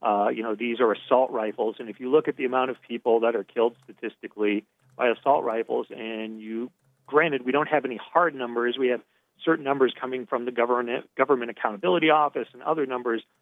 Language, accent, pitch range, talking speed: English, American, 115-155 Hz, 205 wpm